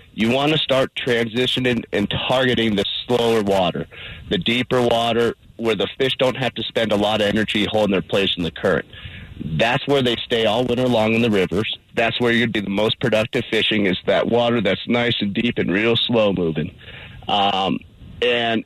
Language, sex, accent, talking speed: English, male, American, 195 wpm